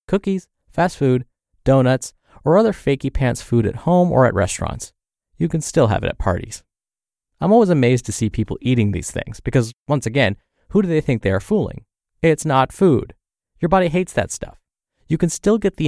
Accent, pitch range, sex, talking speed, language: American, 105-150 Hz, male, 200 wpm, English